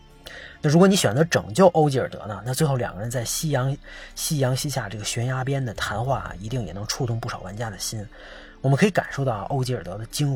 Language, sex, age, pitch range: Chinese, male, 30-49, 110-140 Hz